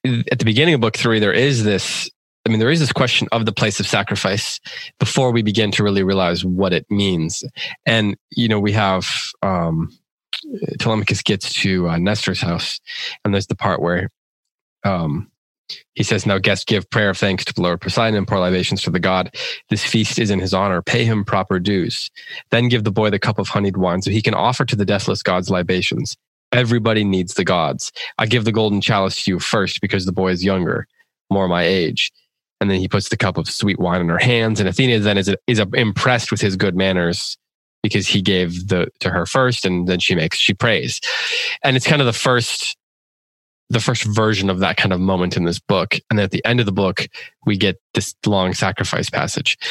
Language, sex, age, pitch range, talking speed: English, male, 20-39, 95-115 Hz, 220 wpm